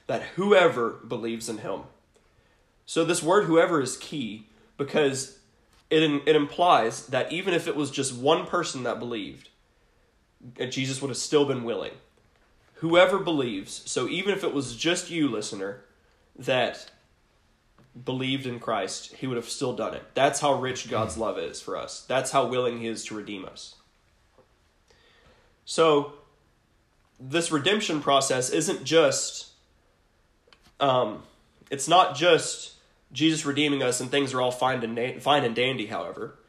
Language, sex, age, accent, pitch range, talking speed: English, male, 20-39, American, 115-145 Hz, 145 wpm